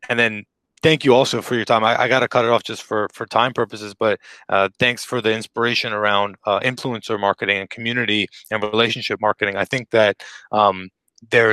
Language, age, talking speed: English, 30-49, 210 wpm